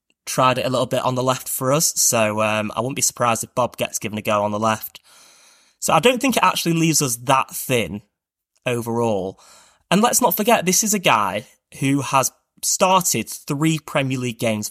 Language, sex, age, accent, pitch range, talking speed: English, male, 20-39, British, 115-165 Hz, 210 wpm